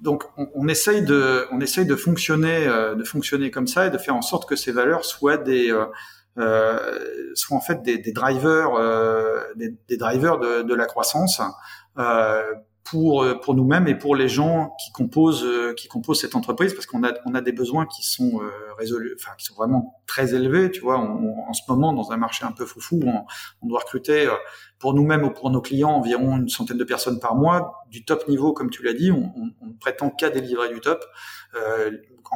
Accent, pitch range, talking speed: French, 115-155 Hz, 210 wpm